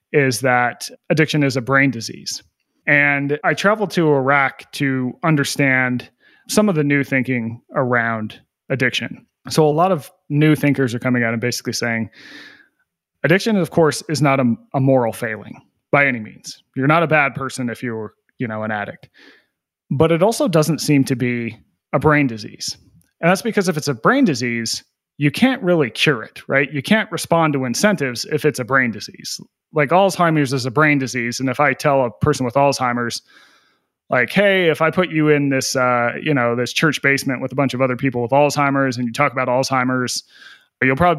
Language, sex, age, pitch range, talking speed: English, male, 30-49, 125-160 Hz, 195 wpm